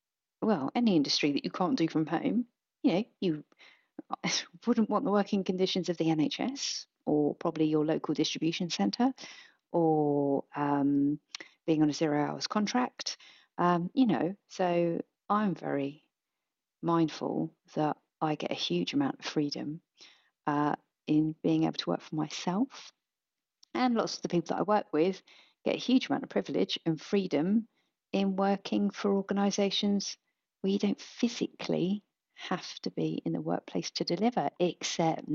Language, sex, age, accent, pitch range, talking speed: English, female, 40-59, British, 150-205 Hz, 155 wpm